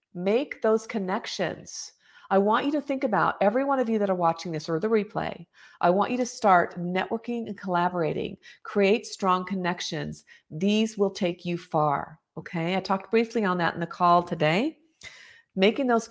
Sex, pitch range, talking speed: female, 180-230 Hz, 180 wpm